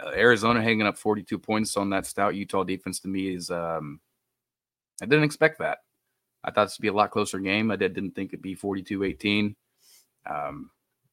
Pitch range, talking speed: 90-100 Hz, 190 wpm